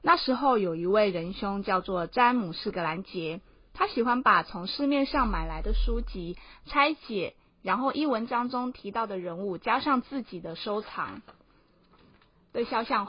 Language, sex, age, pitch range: Chinese, female, 20-39, 190-260 Hz